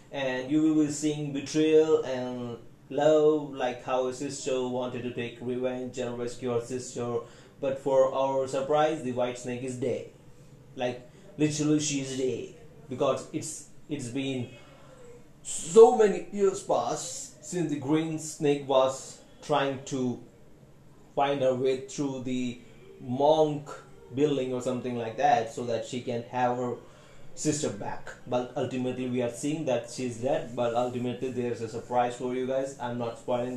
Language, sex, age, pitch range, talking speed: Hindi, male, 30-49, 125-150 Hz, 155 wpm